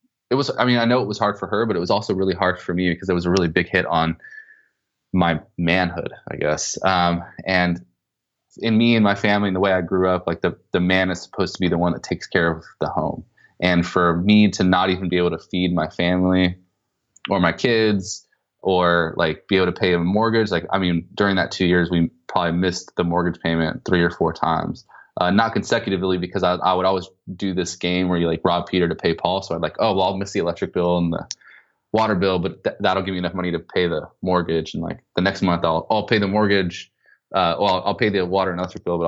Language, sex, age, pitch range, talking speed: English, male, 20-39, 85-100 Hz, 255 wpm